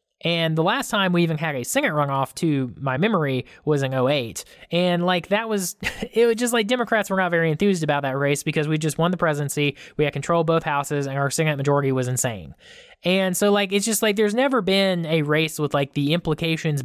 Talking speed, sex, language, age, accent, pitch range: 230 wpm, male, English, 20-39, American, 140-180 Hz